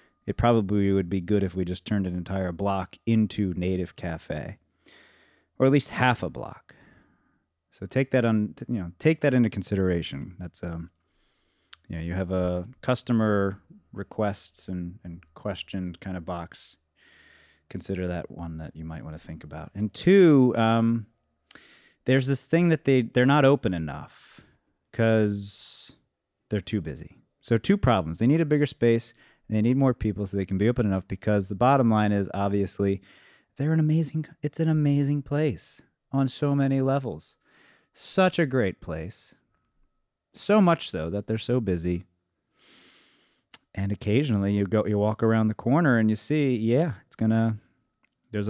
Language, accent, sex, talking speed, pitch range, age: English, American, male, 165 wpm, 95-125 Hz, 30-49